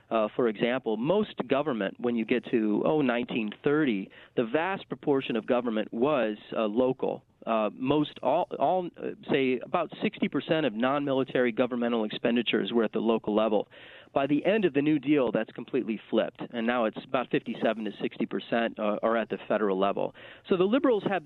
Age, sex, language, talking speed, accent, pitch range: 40-59, male, English, 180 wpm, American, 120-160 Hz